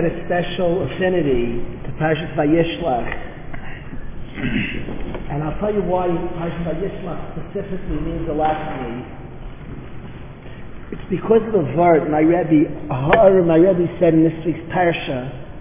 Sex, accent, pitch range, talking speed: male, American, 160-205 Hz, 125 wpm